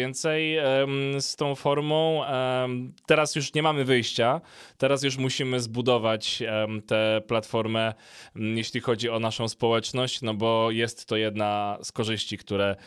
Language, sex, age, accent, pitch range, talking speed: Polish, male, 20-39, native, 110-135 Hz, 130 wpm